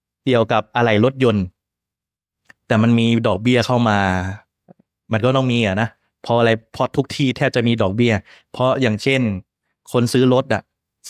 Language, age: Thai, 20-39